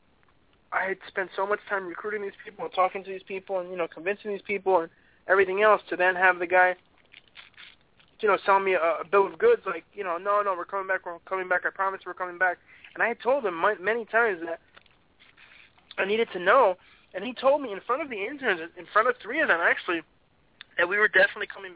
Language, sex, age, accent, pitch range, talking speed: English, male, 20-39, American, 160-190 Hz, 235 wpm